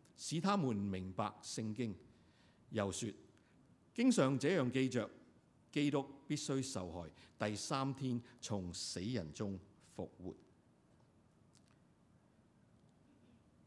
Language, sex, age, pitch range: Chinese, male, 50-69, 110-155 Hz